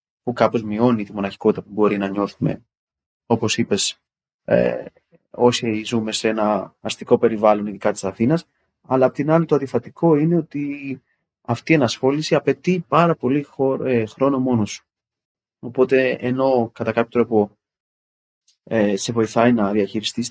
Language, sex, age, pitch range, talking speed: Greek, male, 30-49, 100-130 Hz, 150 wpm